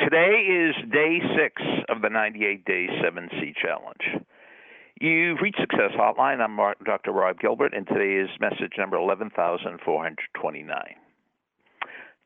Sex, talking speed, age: male, 120 wpm, 60-79